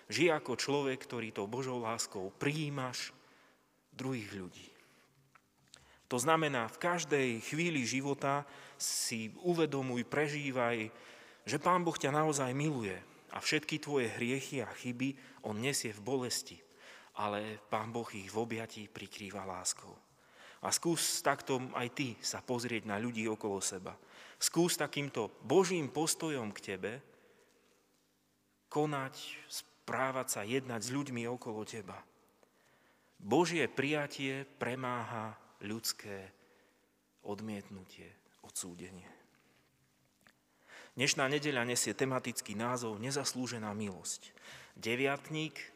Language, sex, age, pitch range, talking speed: Slovak, male, 30-49, 110-140 Hz, 110 wpm